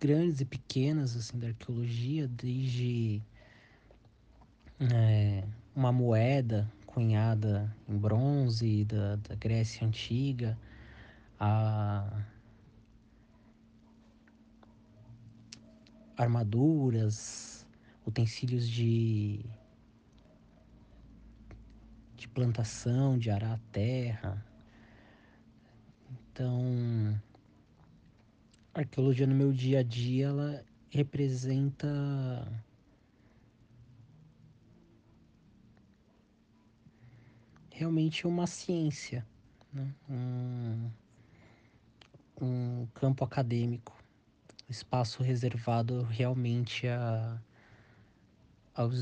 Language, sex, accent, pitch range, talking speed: Portuguese, male, Brazilian, 110-130 Hz, 60 wpm